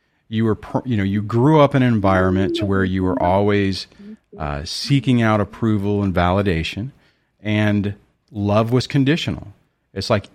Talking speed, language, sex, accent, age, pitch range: 155 wpm, English, male, American, 40-59, 100-130 Hz